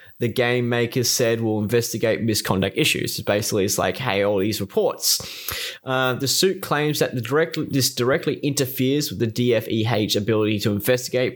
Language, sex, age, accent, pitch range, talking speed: English, male, 20-39, Australian, 115-145 Hz, 170 wpm